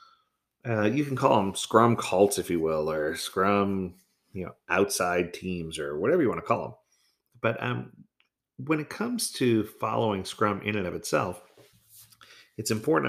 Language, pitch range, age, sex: English, 95-125 Hz, 40-59, male